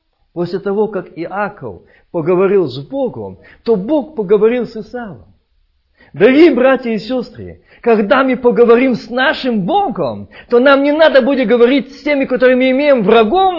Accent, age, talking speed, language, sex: native, 50-69, 150 wpm, Russian, male